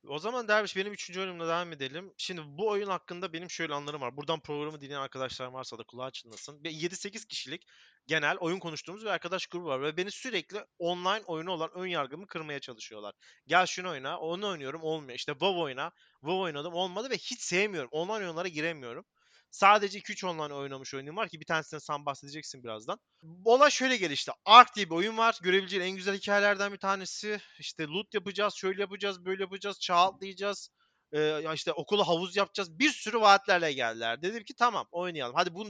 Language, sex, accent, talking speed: Turkish, male, native, 185 wpm